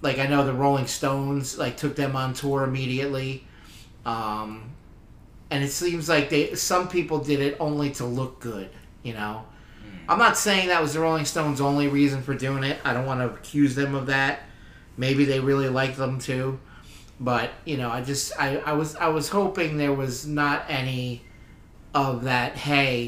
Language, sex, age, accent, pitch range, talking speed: English, male, 30-49, American, 120-145 Hz, 190 wpm